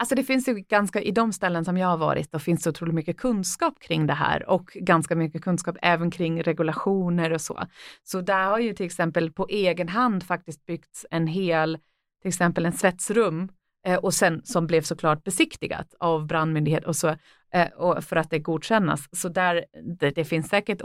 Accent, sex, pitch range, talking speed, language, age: native, female, 165-195 Hz, 200 wpm, Swedish, 30-49